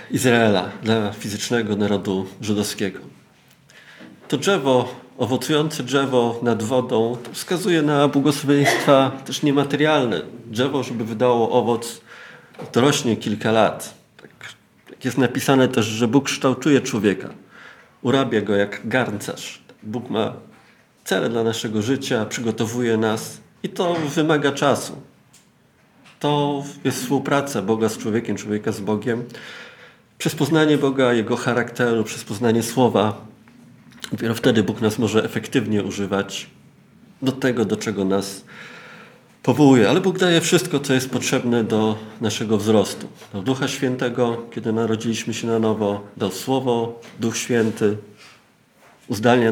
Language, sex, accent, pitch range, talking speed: Polish, male, native, 110-135 Hz, 120 wpm